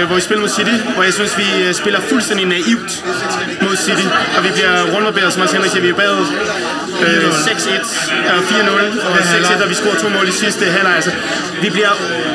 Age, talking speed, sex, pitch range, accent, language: 20-39, 190 wpm, male, 180-215 Hz, native, Danish